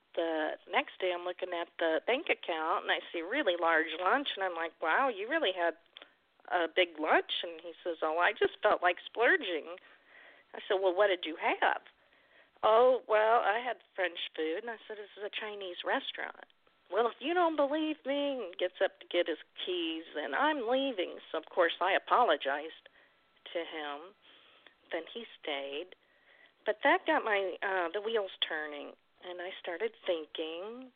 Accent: American